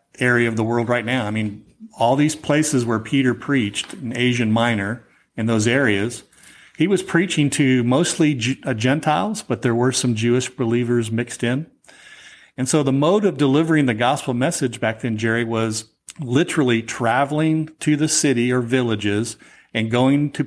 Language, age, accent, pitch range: English, 40-59, American, 115-135 Hz